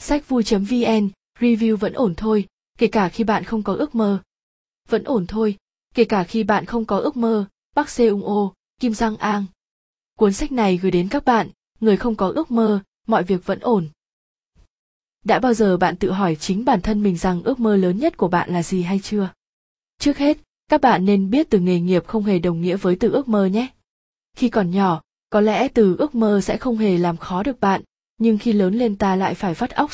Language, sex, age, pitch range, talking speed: Vietnamese, female, 20-39, 185-230 Hz, 220 wpm